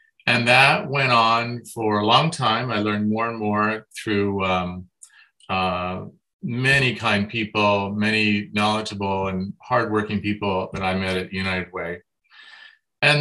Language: English